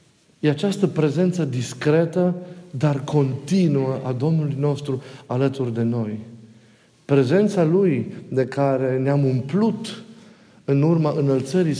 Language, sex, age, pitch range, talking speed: Romanian, male, 50-69, 130-175 Hz, 105 wpm